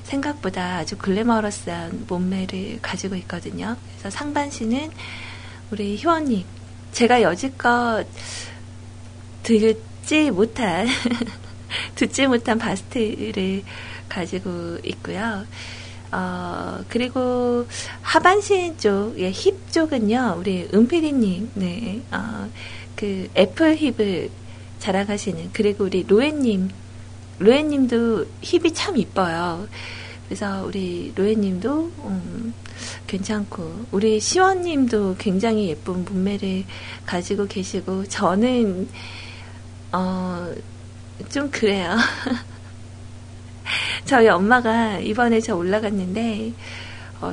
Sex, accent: female, native